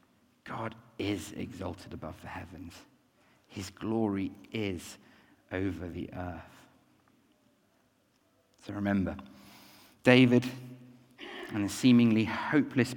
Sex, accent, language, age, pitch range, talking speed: male, British, English, 50-69, 95-130 Hz, 90 wpm